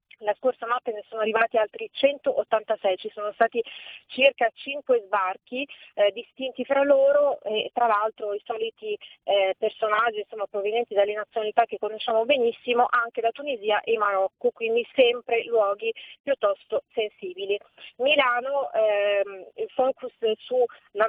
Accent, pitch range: native, 215-275 Hz